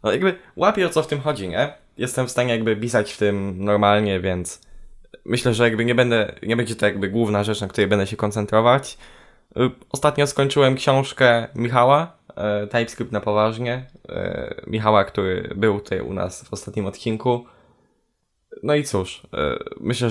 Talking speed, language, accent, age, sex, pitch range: 160 wpm, Polish, native, 10-29, male, 105-135 Hz